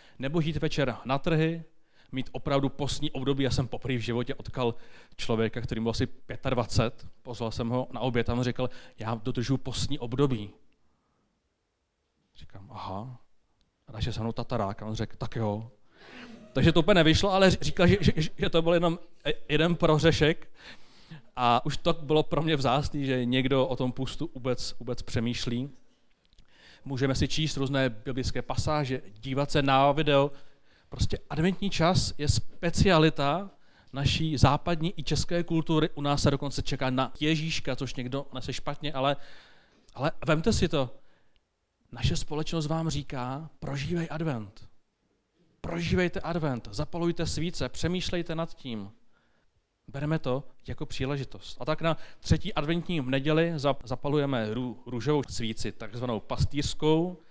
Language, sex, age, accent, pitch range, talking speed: Czech, male, 30-49, native, 120-155 Hz, 140 wpm